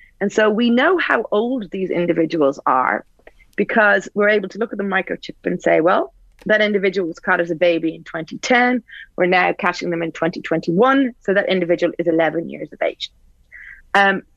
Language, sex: English, female